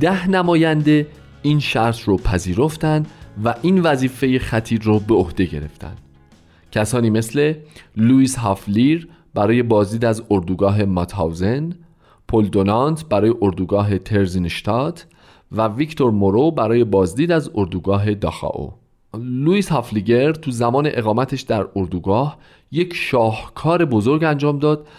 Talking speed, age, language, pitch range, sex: 115 wpm, 40-59, Persian, 100-145 Hz, male